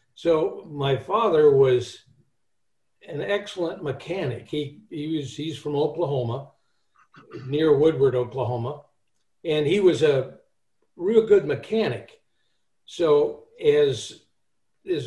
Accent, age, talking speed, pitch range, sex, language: American, 60-79, 105 wpm, 130-175 Hz, male, English